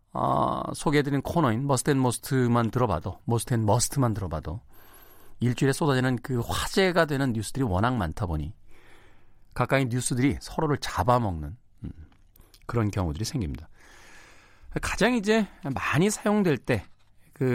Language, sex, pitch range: Korean, male, 100-145 Hz